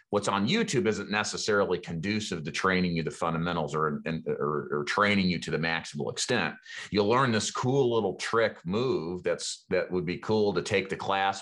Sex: male